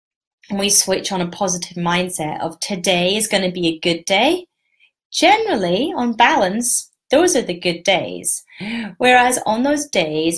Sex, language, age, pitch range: female, English, 30-49, 170-235 Hz